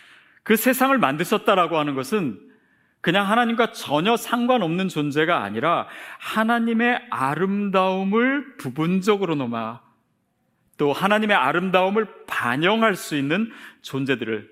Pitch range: 125-200 Hz